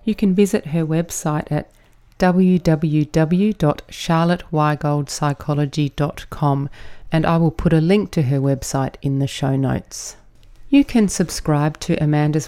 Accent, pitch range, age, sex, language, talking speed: Australian, 145-180 Hz, 40-59, female, English, 120 wpm